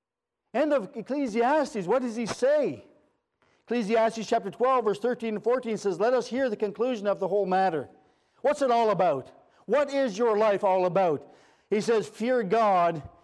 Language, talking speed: English, 170 wpm